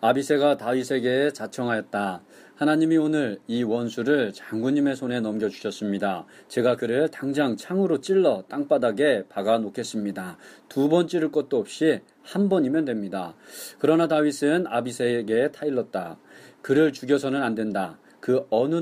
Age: 40-59